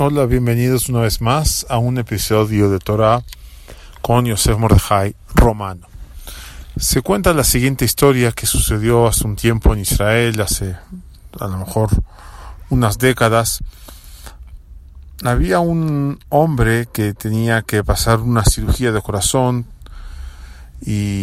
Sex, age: male, 40-59